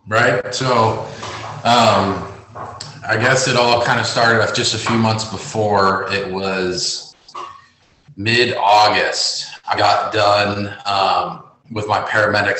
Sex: male